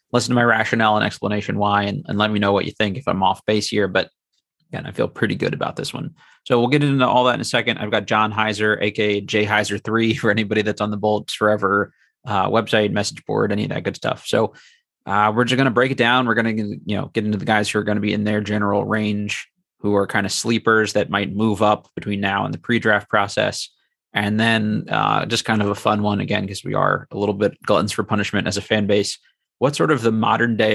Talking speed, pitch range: 260 wpm, 105-115 Hz